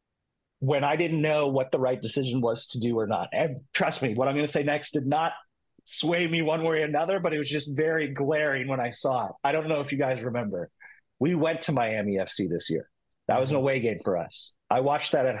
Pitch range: 125-160 Hz